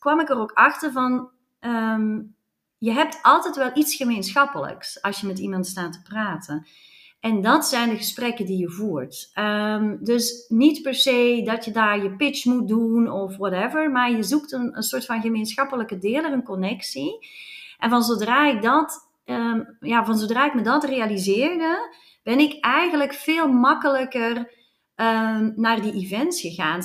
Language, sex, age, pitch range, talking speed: Dutch, female, 30-49, 215-270 Hz, 170 wpm